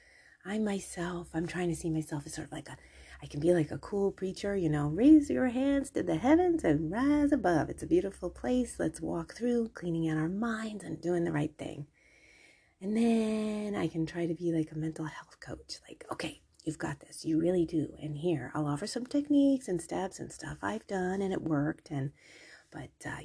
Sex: female